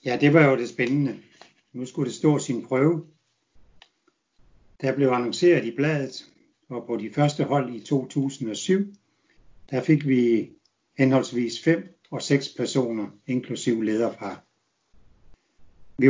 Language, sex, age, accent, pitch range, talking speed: English, male, 60-79, Danish, 115-145 Hz, 130 wpm